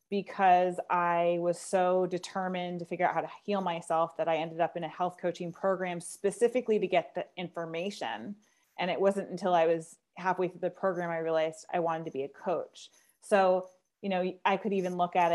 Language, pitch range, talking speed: English, 175-195 Hz, 205 wpm